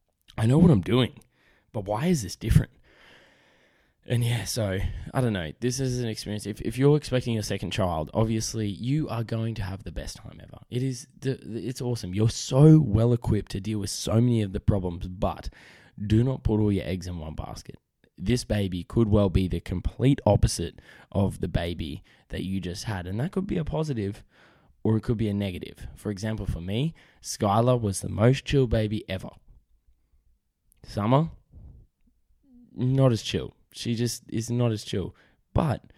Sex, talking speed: male, 185 wpm